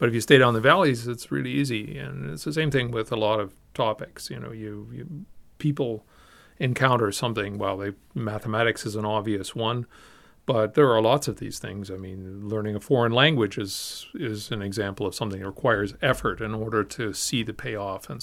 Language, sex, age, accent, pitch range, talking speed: English, male, 40-59, American, 105-135 Hz, 205 wpm